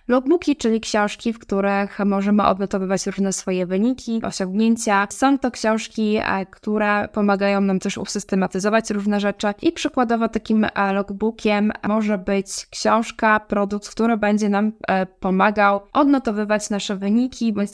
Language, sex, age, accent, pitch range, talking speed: Polish, female, 10-29, native, 195-220 Hz, 125 wpm